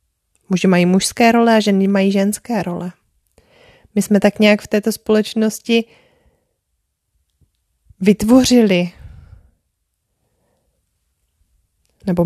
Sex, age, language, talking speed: female, 20-39, Czech, 90 wpm